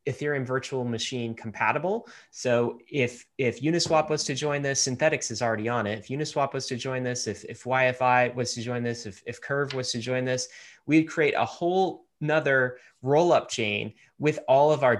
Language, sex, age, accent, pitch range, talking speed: English, male, 30-49, American, 115-135 Hz, 190 wpm